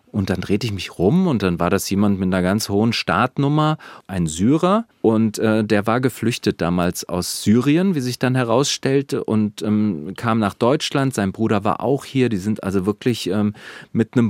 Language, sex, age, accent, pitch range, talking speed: German, male, 40-59, German, 105-130 Hz, 195 wpm